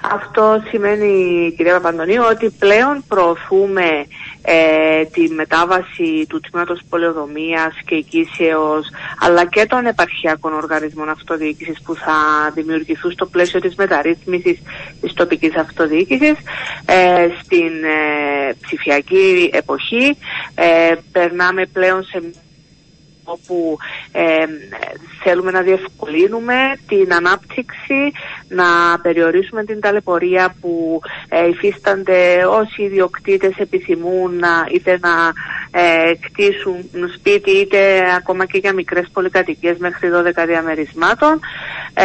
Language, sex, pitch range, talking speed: Greek, female, 165-220 Hz, 100 wpm